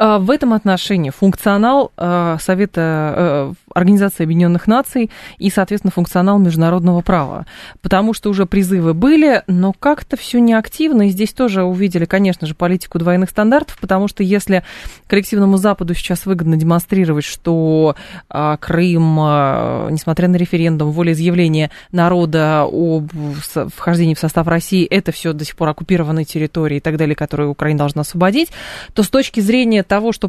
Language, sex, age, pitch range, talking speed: Russian, female, 20-39, 160-200 Hz, 150 wpm